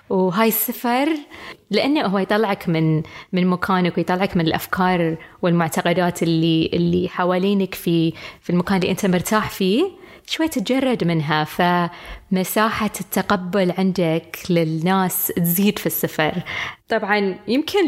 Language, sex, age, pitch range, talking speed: Arabic, female, 20-39, 170-210 Hz, 115 wpm